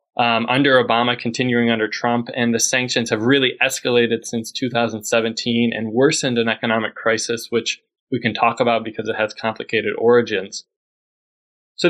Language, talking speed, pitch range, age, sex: English, 150 wpm, 115-140 Hz, 20-39, male